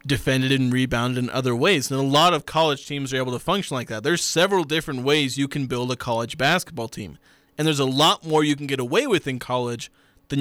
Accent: American